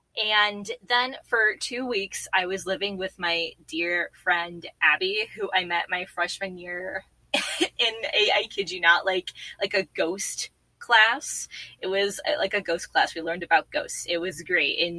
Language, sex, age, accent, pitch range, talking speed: English, female, 20-39, American, 170-220 Hz, 175 wpm